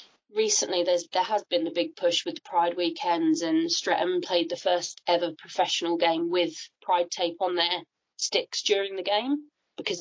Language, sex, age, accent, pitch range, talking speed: English, female, 30-49, British, 175-250 Hz, 180 wpm